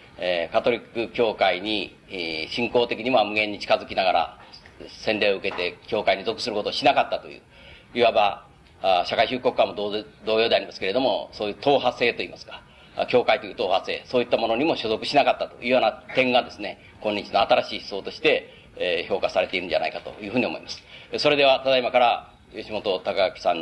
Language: Japanese